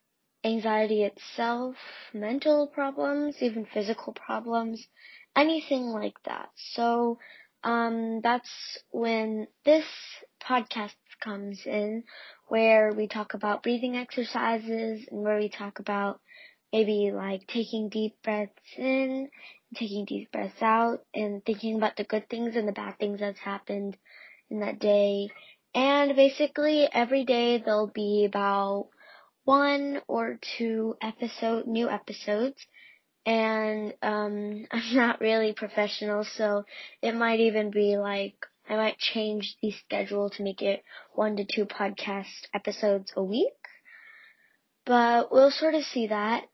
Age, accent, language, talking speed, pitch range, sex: 20-39, American, English, 130 wpm, 210-250 Hz, female